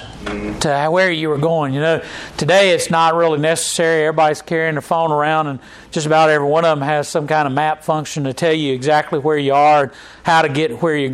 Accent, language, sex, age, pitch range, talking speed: American, English, male, 40-59, 140-170 Hz, 225 wpm